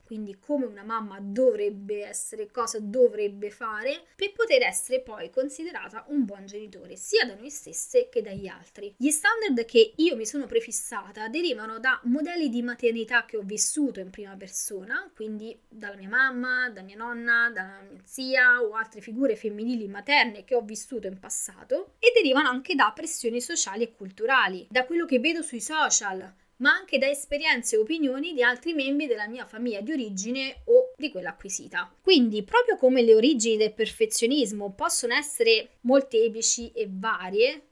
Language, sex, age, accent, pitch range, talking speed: Italian, female, 20-39, native, 220-310 Hz, 170 wpm